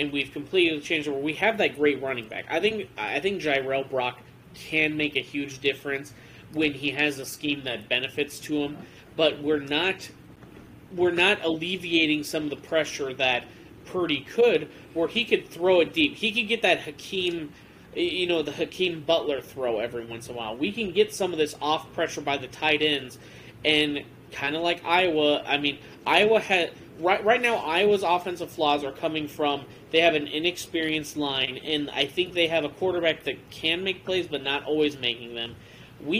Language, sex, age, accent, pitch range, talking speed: English, male, 30-49, American, 145-185 Hz, 195 wpm